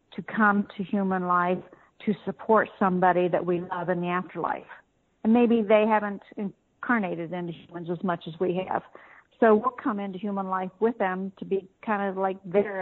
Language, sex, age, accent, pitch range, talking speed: English, female, 50-69, American, 185-210 Hz, 185 wpm